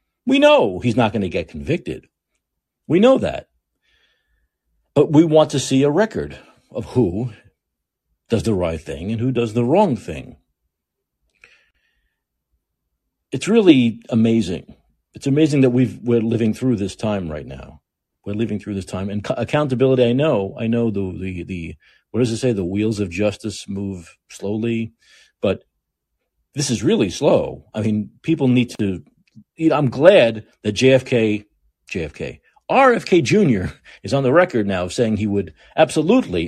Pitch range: 100-130 Hz